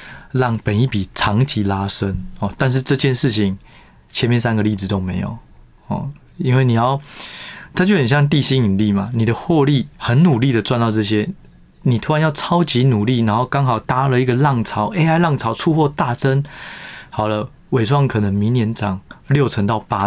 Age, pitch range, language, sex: 20-39, 105-140 Hz, Chinese, male